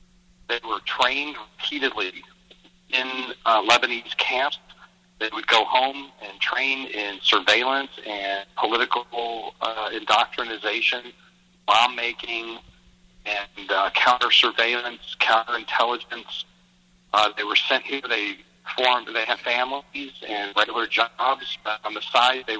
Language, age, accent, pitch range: English, 50-69, American, 105-135 Hz